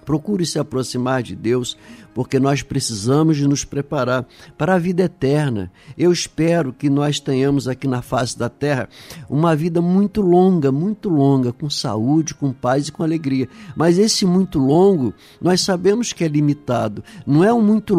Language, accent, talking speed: Portuguese, Brazilian, 170 wpm